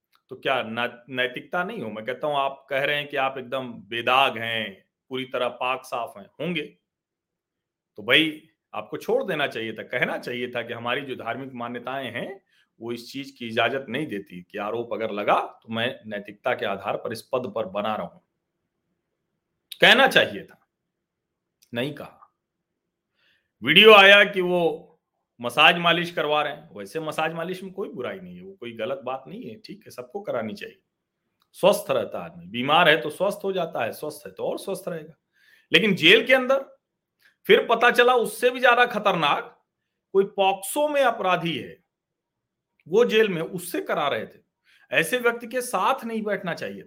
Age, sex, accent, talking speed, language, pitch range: 40-59, male, native, 180 wpm, Hindi, 125-195 Hz